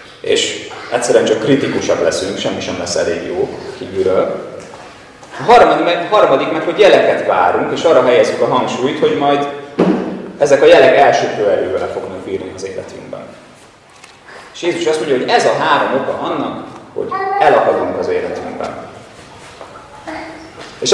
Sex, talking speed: male, 145 wpm